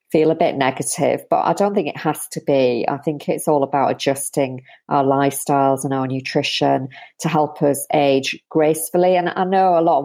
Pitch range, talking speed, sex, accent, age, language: 135-155 Hz, 205 wpm, female, British, 40-59, English